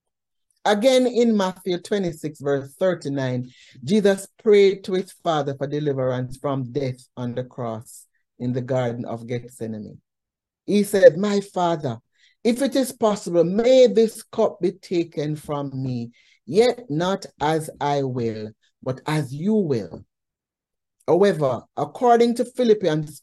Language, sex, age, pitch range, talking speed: English, male, 60-79, 130-205 Hz, 130 wpm